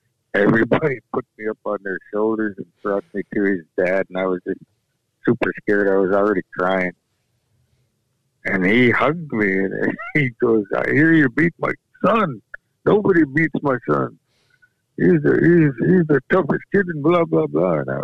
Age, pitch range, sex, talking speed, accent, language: 60-79, 100-130 Hz, male, 170 wpm, American, English